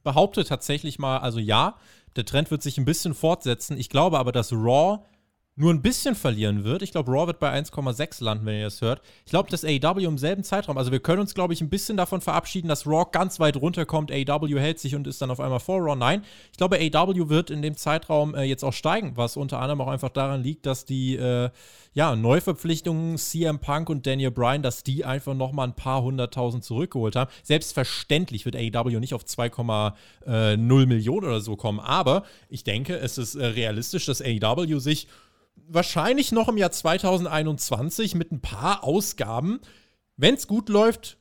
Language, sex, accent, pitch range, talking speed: German, male, German, 125-165 Hz, 200 wpm